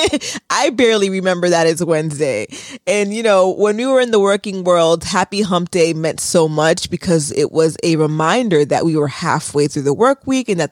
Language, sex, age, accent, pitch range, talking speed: English, female, 20-39, American, 160-205 Hz, 205 wpm